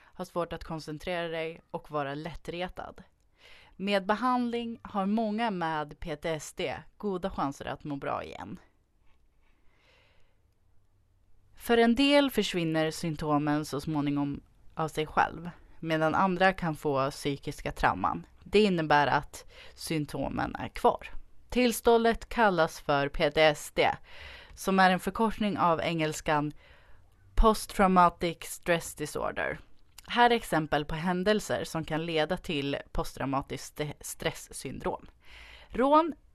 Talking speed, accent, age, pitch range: 110 wpm, native, 30-49, 150-205 Hz